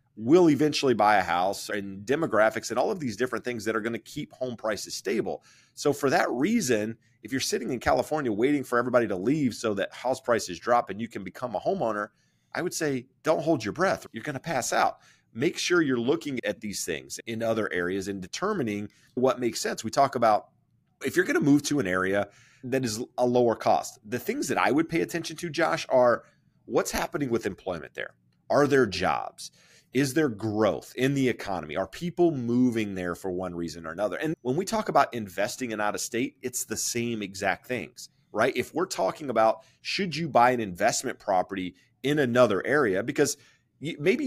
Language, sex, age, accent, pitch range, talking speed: English, male, 30-49, American, 105-135 Hz, 205 wpm